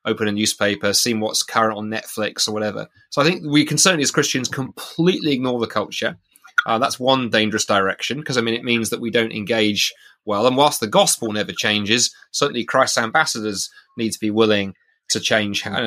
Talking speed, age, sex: 205 wpm, 30-49, male